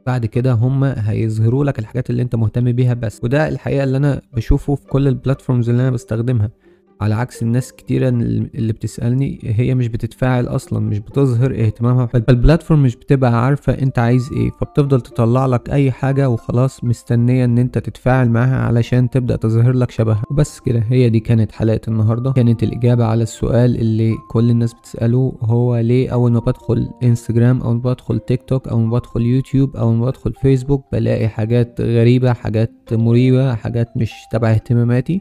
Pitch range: 115-130 Hz